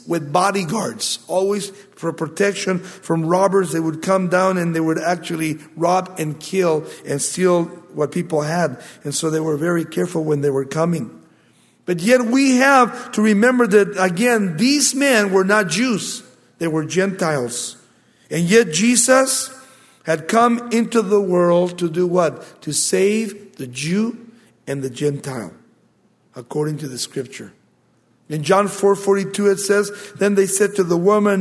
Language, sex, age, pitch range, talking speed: English, male, 50-69, 155-205 Hz, 155 wpm